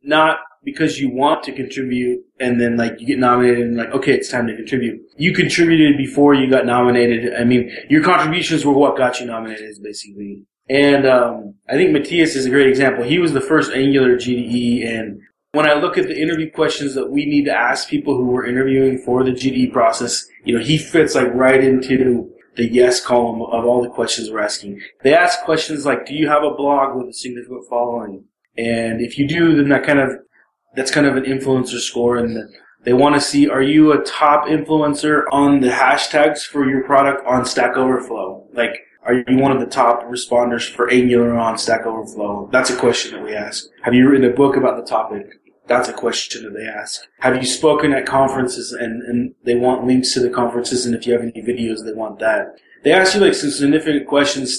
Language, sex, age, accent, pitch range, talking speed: English, male, 30-49, American, 120-145 Hz, 215 wpm